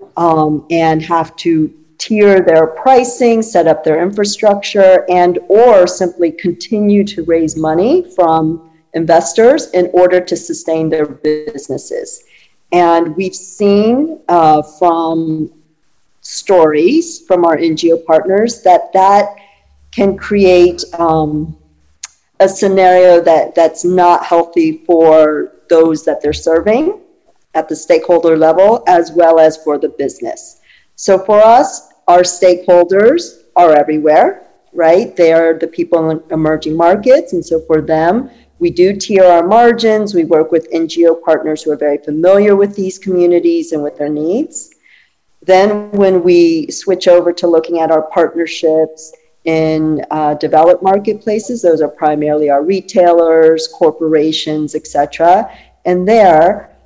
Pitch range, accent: 160-195 Hz, American